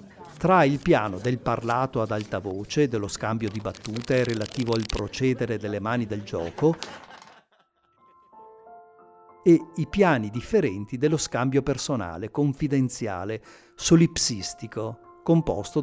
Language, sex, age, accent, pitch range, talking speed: Italian, male, 50-69, native, 110-145 Hz, 110 wpm